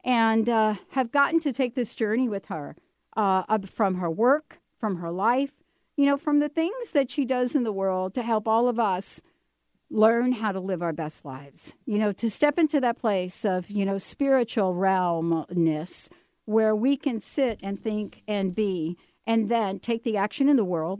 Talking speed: 195 wpm